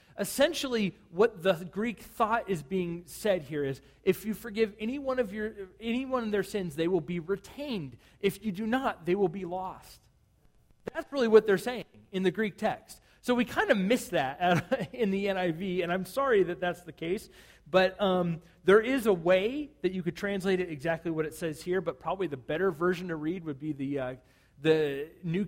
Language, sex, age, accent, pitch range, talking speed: English, male, 40-59, American, 160-215 Hz, 200 wpm